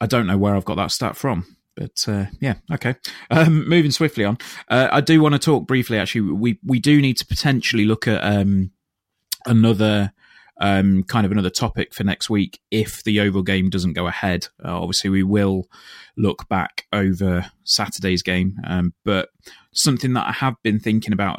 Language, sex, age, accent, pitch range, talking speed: English, male, 20-39, British, 90-115 Hz, 190 wpm